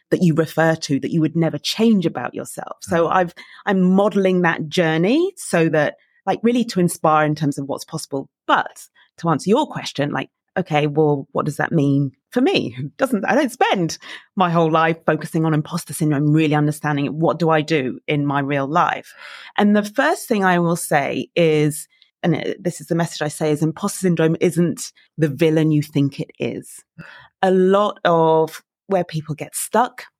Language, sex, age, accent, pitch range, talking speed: English, female, 30-49, British, 155-190 Hz, 190 wpm